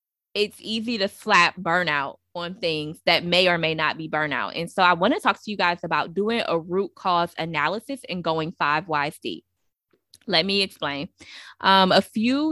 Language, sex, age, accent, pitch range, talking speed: English, female, 20-39, American, 155-190 Hz, 190 wpm